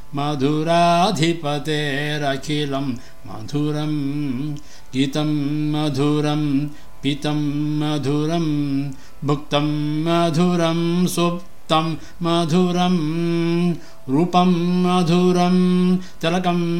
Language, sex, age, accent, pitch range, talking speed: English, male, 60-79, Indian, 145-170 Hz, 50 wpm